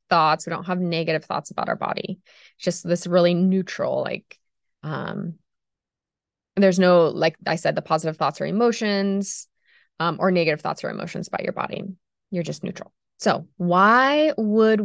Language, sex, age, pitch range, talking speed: English, female, 20-39, 170-215 Hz, 165 wpm